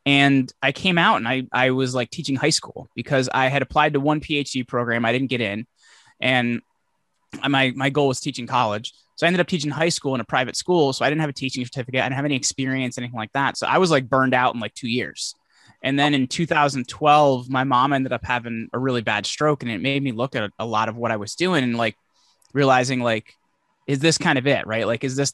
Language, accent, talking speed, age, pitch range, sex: English, American, 255 wpm, 20-39, 125-150 Hz, male